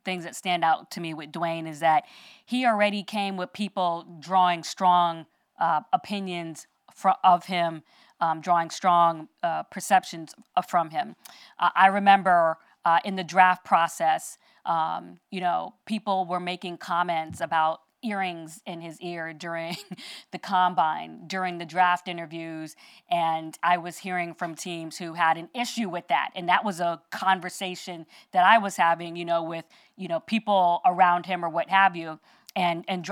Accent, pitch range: American, 170-200 Hz